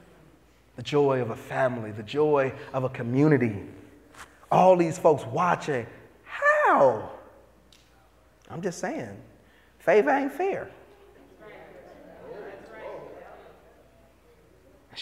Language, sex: English, male